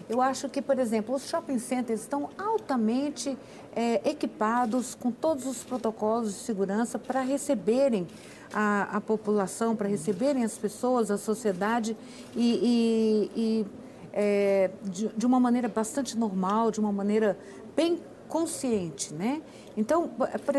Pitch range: 205-250 Hz